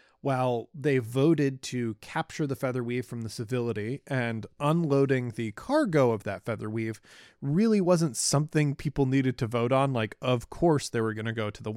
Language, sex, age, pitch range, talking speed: English, male, 20-39, 120-150 Hz, 190 wpm